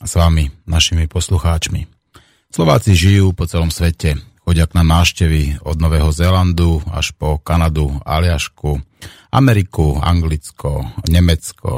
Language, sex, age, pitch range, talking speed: Slovak, male, 30-49, 80-95 Hz, 115 wpm